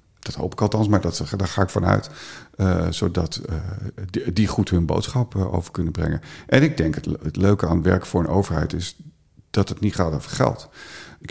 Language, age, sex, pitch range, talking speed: Dutch, 50-69, male, 85-105 Hz, 225 wpm